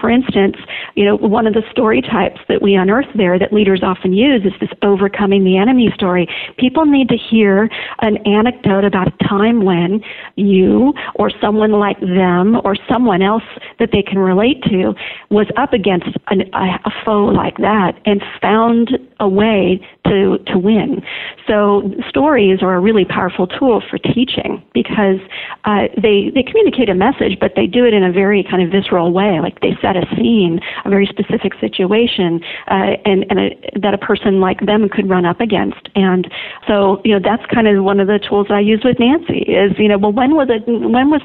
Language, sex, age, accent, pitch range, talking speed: English, female, 50-69, American, 190-225 Hz, 195 wpm